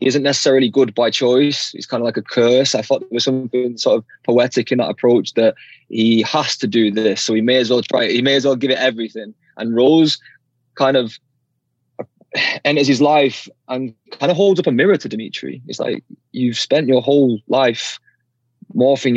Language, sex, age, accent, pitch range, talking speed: English, male, 20-39, British, 115-135 Hz, 210 wpm